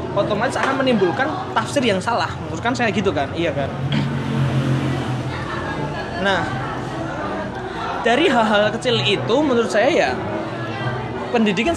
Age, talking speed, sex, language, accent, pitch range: 20-39, 105 wpm, male, Indonesian, native, 190-250 Hz